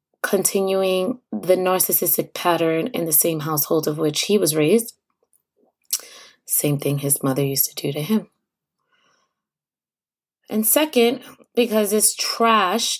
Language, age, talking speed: English, 20-39, 125 wpm